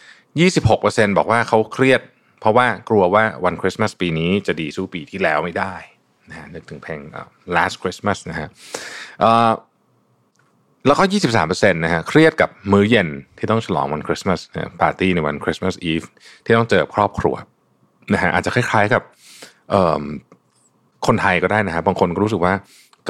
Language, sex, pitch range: Thai, male, 90-115 Hz